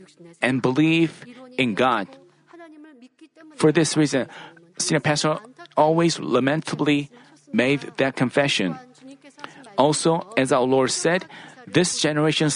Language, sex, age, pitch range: Korean, male, 40-59, 140-185 Hz